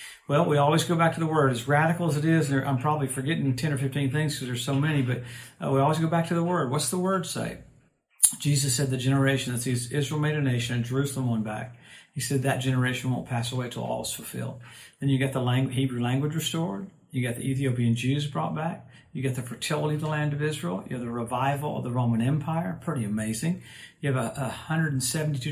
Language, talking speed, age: English, 230 wpm, 50-69